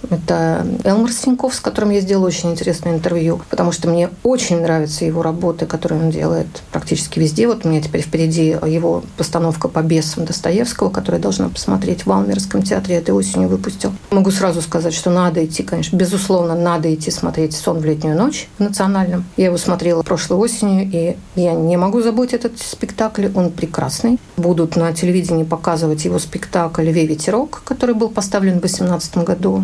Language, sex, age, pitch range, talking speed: Russian, female, 50-69, 165-195 Hz, 180 wpm